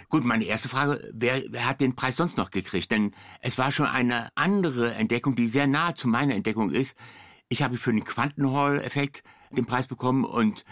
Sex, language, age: male, German, 60-79